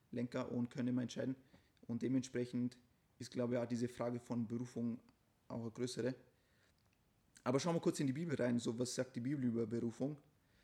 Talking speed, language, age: 185 wpm, German, 30-49